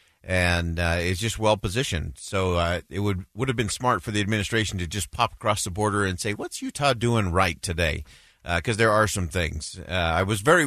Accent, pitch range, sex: American, 85-110 Hz, male